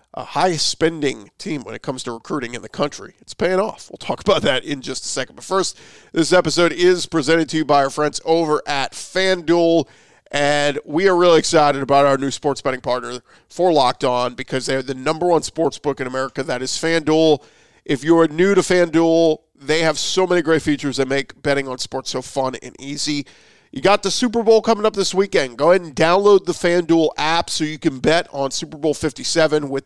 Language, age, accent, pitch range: English, 40-59, American, 135-170 Hz